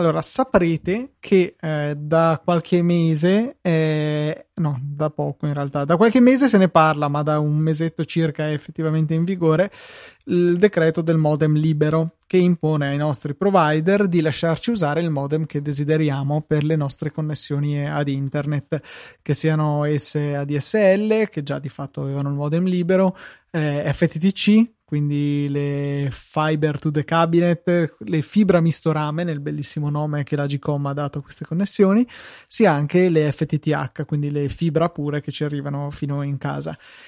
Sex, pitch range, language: male, 150-180 Hz, Italian